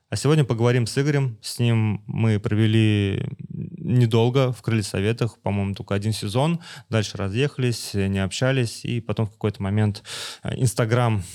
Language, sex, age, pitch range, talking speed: Russian, male, 20-39, 100-120 Hz, 130 wpm